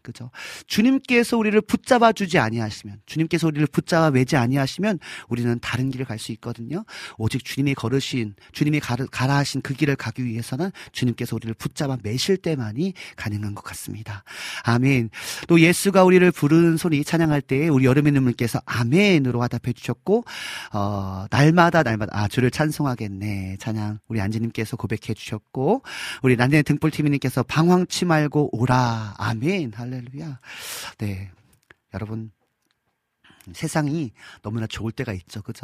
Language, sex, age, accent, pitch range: Korean, male, 40-59, native, 110-155 Hz